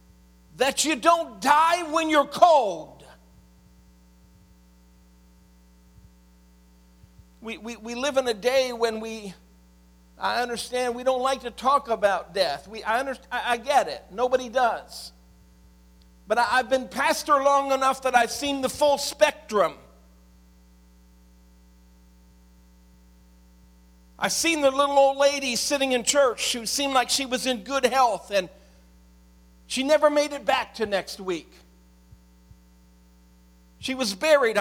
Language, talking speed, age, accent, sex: English, 130 wpm, 50-69, American, male